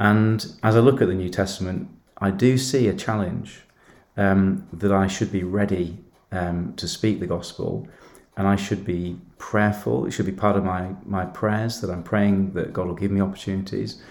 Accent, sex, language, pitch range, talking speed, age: British, male, English, 95-105 Hz, 195 wpm, 40-59